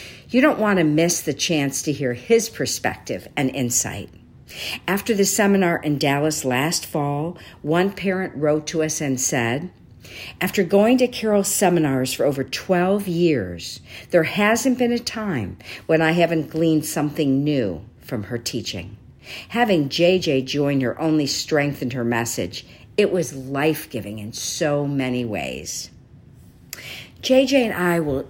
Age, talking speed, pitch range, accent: 50-69, 145 wpm, 125-180 Hz, American